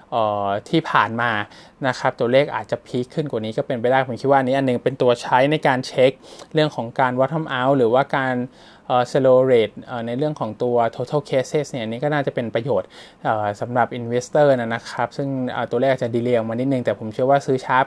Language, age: Thai, 20-39